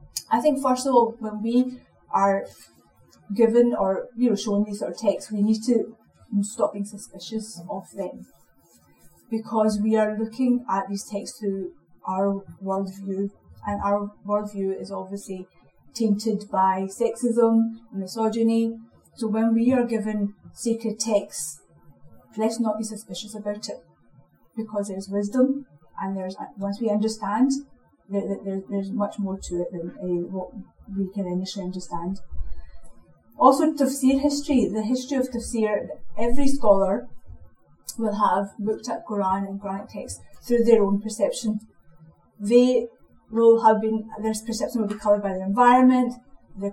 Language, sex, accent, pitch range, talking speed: English, female, British, 195-230 Hz, 145 wpm